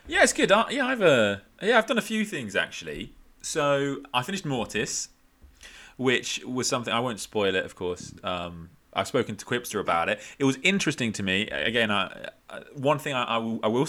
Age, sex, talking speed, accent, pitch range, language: 30-49, male, 205 wpm, British, 105-145 Hz, English